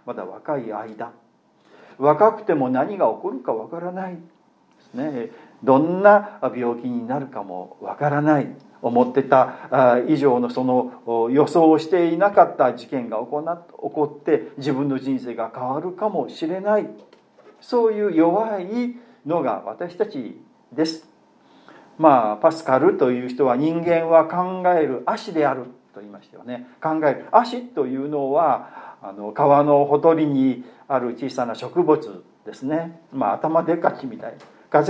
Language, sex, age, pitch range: Japanese, male, 40-59, 135-190 Hz